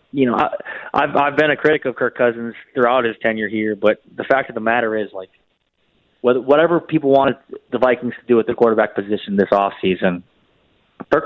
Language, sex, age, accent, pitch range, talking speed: English, male, 20-39, American, 100-120 Hz, 205 wpm